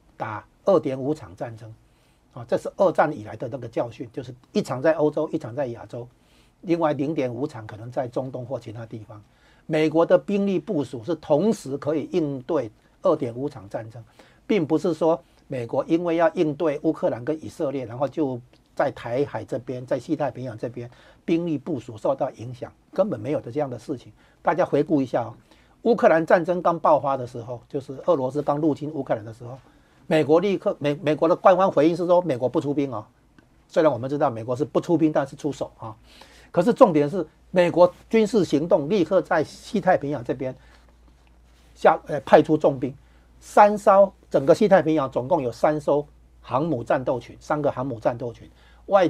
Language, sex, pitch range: Chinese, male, 120-165 Hz